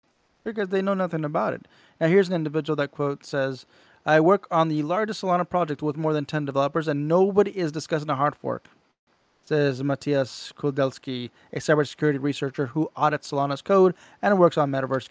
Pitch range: 140-180 Hz